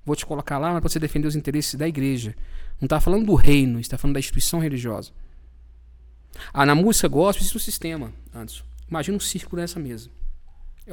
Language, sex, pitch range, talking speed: Portuguese, male, 130-175 Hz, 200 wpm